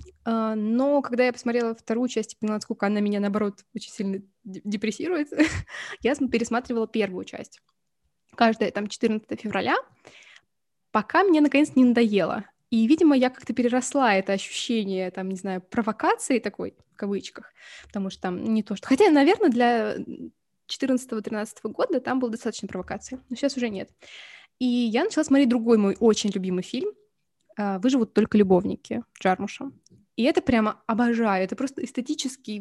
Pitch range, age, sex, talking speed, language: 205-265 Hz, 20-39, female, 150 wpm, Russian